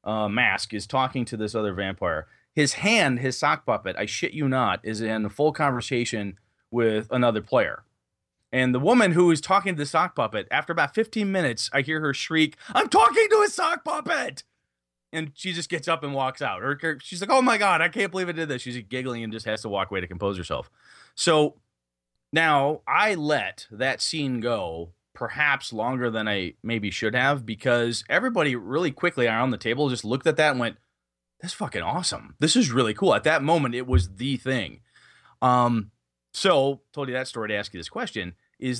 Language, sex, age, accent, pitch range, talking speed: English, male, 30-49, American, 110-145 Hz, 205 wpm